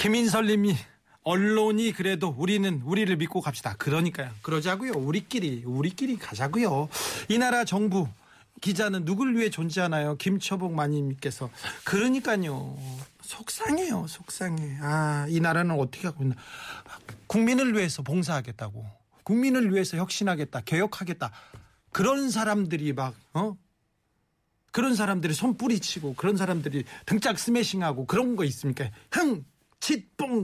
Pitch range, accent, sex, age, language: 150-220 Hz, native, male, 40-59, Korean